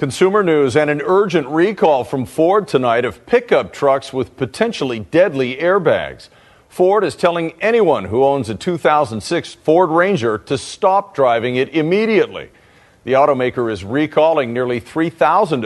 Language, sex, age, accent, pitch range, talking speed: English, male, 50-69, American, 125-180 Hz, 140 wpm